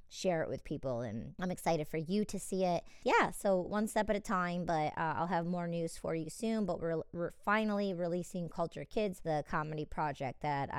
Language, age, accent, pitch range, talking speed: English, 30-49, American, 150-185 Hz, 215 wpm